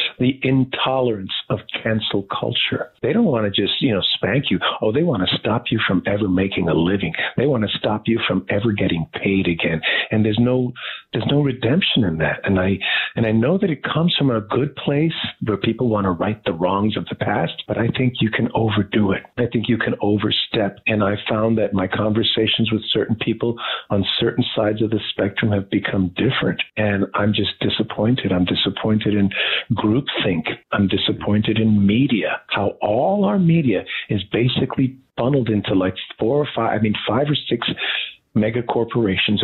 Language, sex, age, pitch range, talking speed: English, male, 50-69, 100-130 Hz, 190 wpm